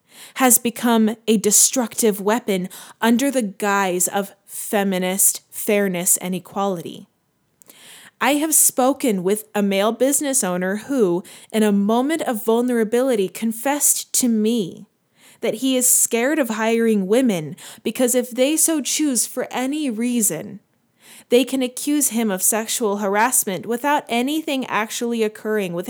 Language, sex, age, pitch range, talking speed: English, female, 20-39, 205-255 Hz, 130 wpm